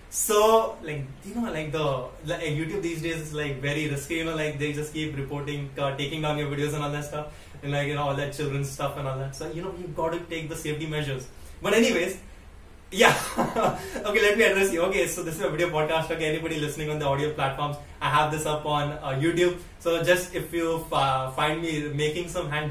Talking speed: 235 wpm